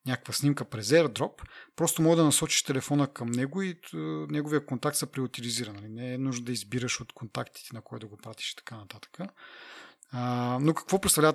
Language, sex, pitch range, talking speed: Bulgarian, male, 120-155 Hz, 180 wpm